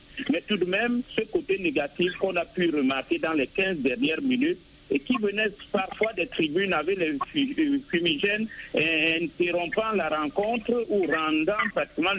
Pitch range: 175-245 Hz